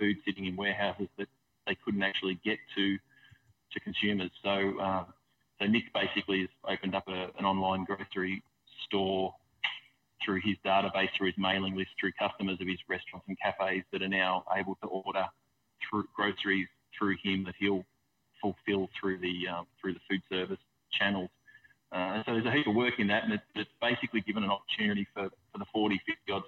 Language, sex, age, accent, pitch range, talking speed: English, male, 20-39, Australian, 95-105 Hz, 185 wpm